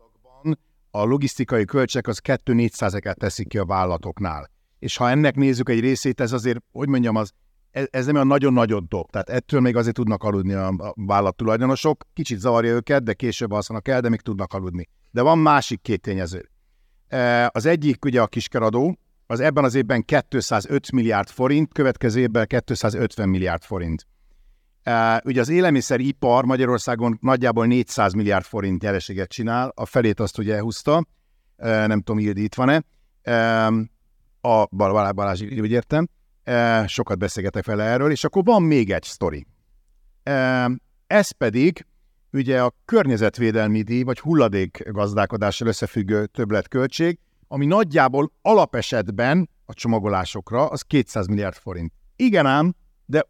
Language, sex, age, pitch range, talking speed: Hungarian, male, 60-79, 105-135 Hz, 145 wpm